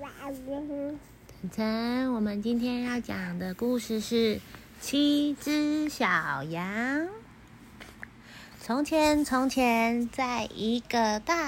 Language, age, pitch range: Chinese, 30-49, 210-270 Hz